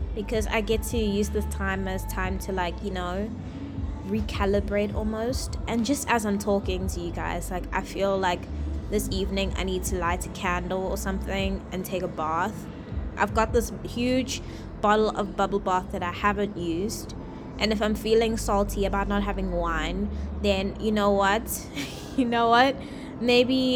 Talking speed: 175 wpm